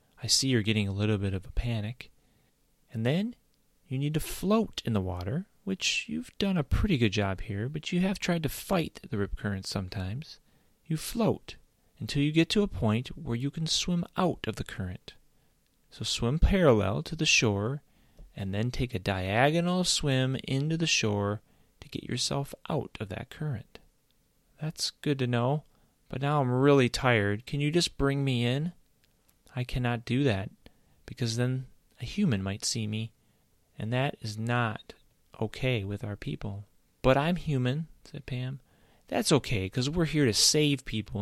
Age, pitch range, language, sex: 30-49, 105-150 Hz, English, male